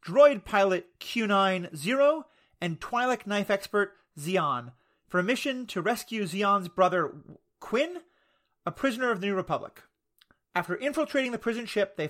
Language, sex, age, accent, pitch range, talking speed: English, male, 30-49, American, 175-225 Hz, 140 wpm